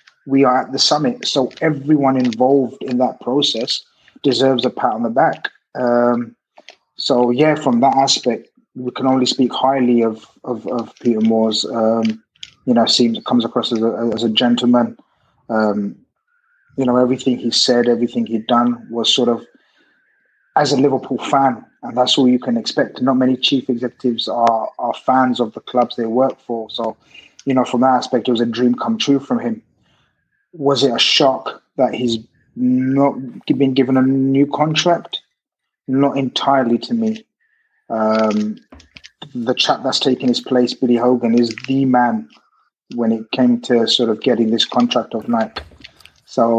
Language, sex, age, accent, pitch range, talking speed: English, male, 20-39, British, 115-130 Hz, 170 wpm